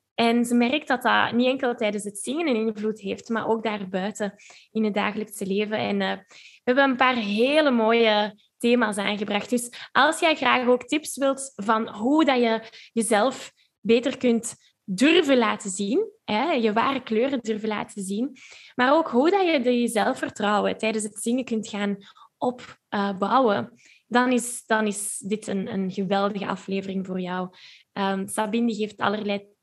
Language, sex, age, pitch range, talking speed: Dutch, female, 10-29, 210-255 Hz, 165 wpm